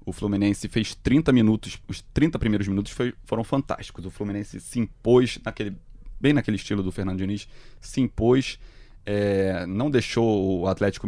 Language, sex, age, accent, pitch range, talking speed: Portuguese, male, 20-39, Brazilian, 95-125 Hz, 160 wpm